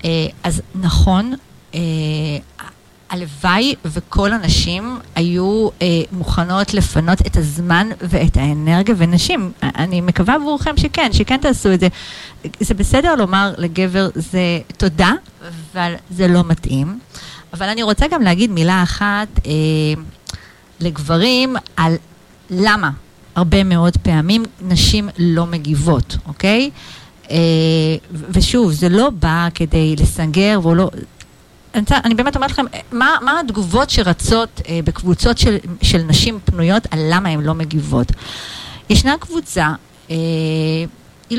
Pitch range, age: 160-210 Hz, 40-59